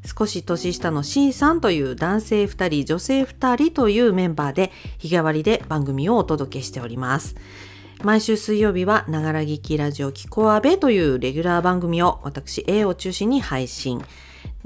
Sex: female